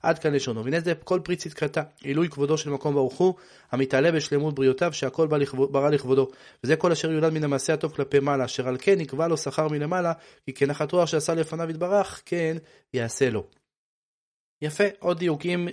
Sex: male